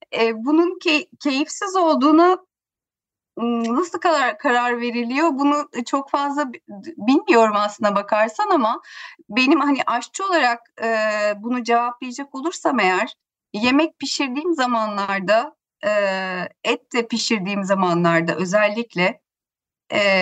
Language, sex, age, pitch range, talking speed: Turkish, female, 30-49, 200-290 Hz, 105 wpm